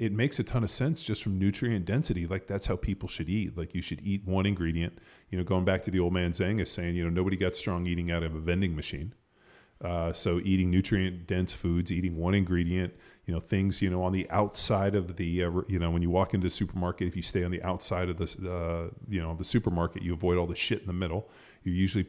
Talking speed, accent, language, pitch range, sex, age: 260 wpm, American, English, 85-100 Hz, male, 30-49